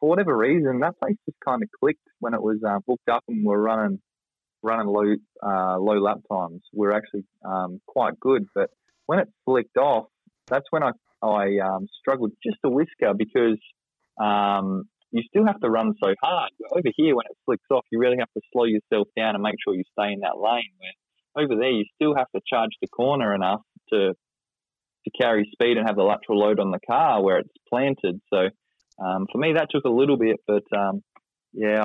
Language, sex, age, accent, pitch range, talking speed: English, male, 20-39, Australian, 100-115 Hz, 210 wpm